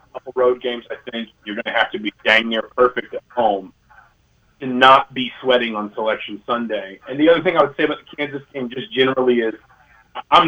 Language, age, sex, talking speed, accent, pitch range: English, 30-49, male, 210 wpm, American, 115-135 Hz